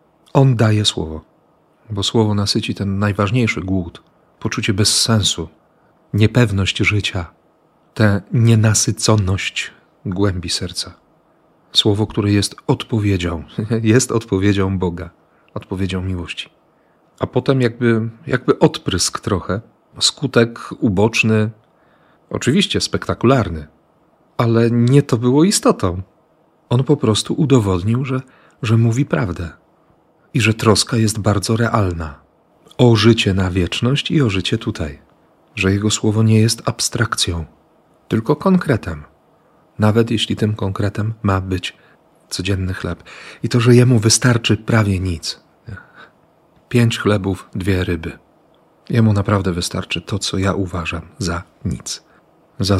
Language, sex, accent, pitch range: Polish, male, native, 95-120 Hz